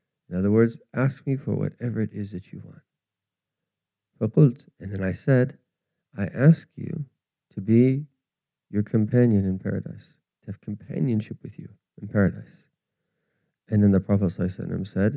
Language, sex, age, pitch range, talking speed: English, male, 40-59, 100-135 Hz, 145 wpm